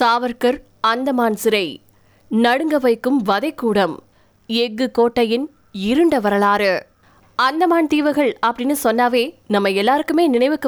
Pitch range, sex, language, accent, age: 225-285 Hz, female, Tamil, native, 20-39